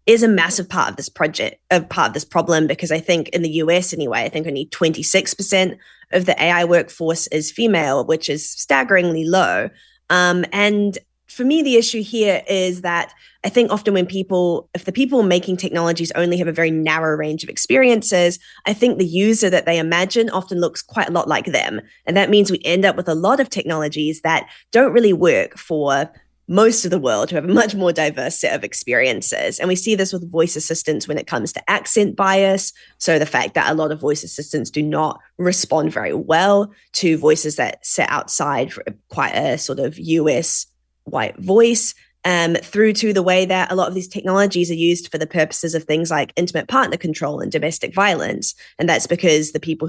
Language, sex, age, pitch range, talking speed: English, female, 20-39, 160-195 Hz, 210 wpm